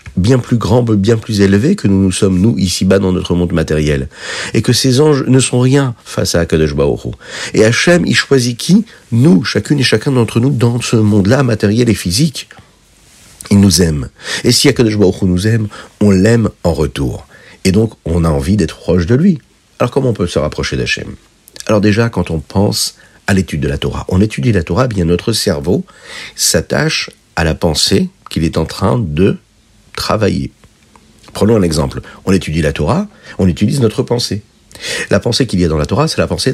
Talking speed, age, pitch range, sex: 195 wpm, 50-69, 90-120 Hz, male